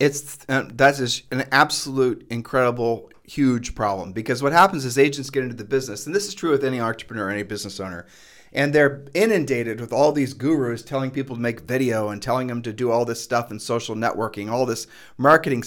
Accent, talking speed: American, 205 wpm